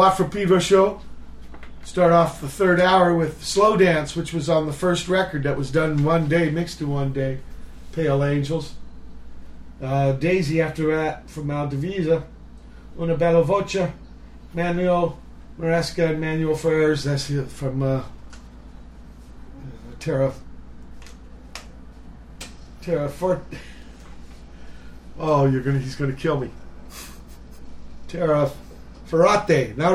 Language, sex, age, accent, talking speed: English, male, 50-69, American, 115 wpm